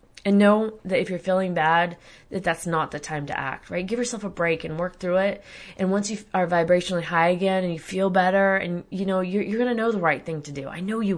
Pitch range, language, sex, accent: 160-190 Hz, English, female, American